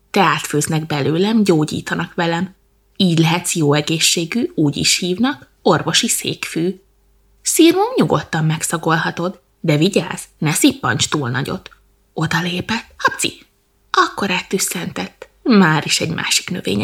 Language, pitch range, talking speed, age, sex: Hungarian, 170-225 Hz, 110 wpm, 20-39, female